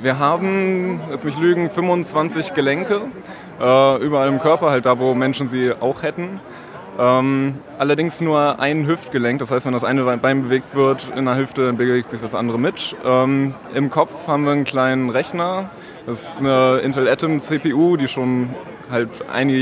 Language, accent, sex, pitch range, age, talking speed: German, German, male, 125-145 Hz, 20-39, 170 wpm